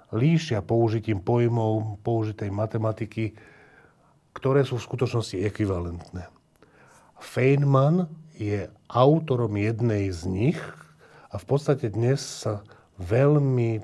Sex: male